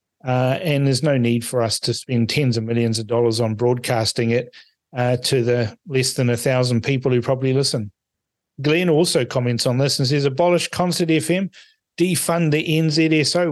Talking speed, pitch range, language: 180 wpm, 120-140 Hz, English